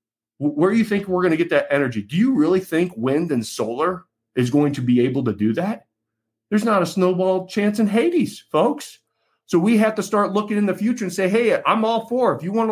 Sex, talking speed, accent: male, 240 wpm, American